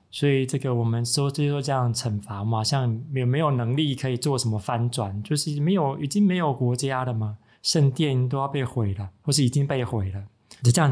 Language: Chinese